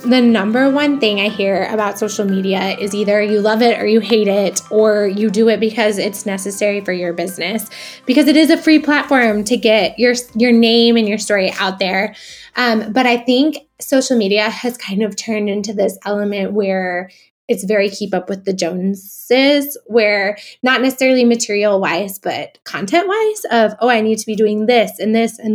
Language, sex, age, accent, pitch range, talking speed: English, female, 20-39, American, 200-245 Hz, 195 wpm